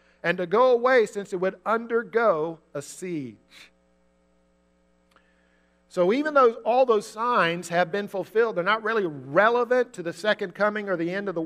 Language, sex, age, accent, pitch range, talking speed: English, male, 50-69, American, 145-215 Hz, 170 wpm